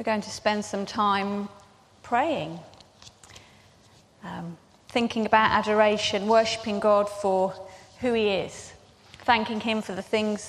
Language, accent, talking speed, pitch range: English, British, 120 wpm, 195-235 Hz